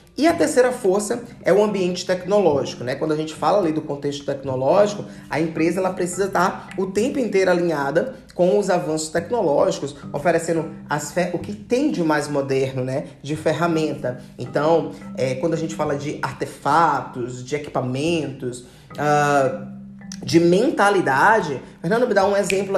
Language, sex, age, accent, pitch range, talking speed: Portuguese, male, 20-39, Brazilian, 150-195 Hz, 145 wpm